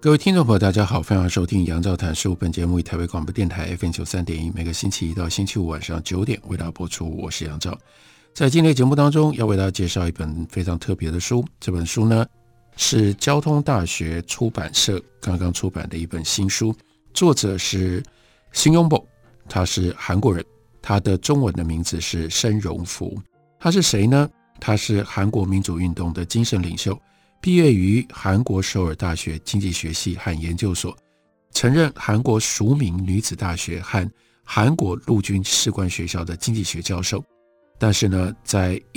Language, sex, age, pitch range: Chinese, male, 50-69, 90-115 Hz